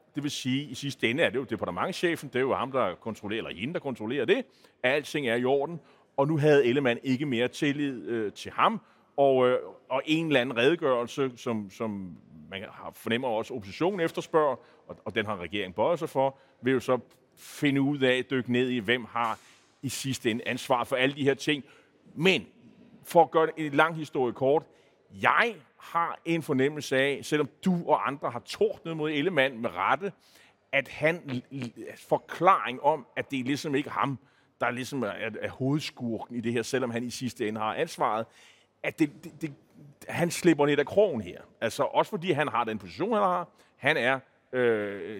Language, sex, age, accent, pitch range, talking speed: Danish, male, 30-49, native, 120-150 Hz, 205 wpm